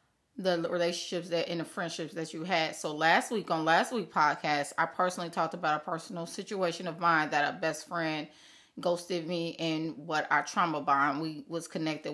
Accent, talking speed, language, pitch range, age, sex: American, 195 wpm, English, 160-185 Hz, 30-49, female